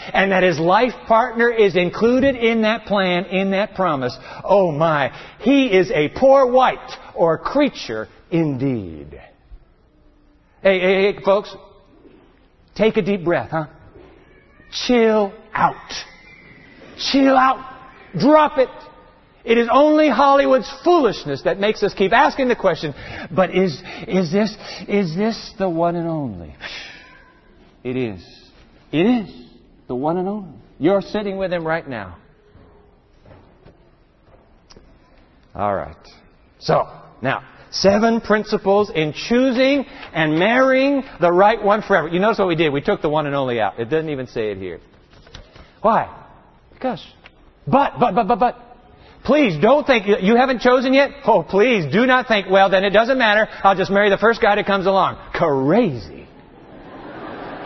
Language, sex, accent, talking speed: English, male, American, 145 wpm